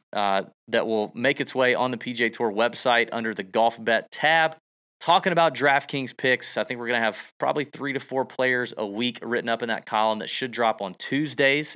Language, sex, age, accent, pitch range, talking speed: English, male, 30-49, American, 115-145 Hz, 220 wpm